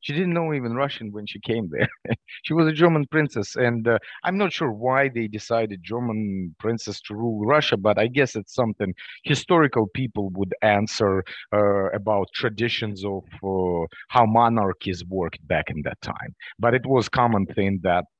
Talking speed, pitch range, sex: 180 wpm, 100-135 Hz, male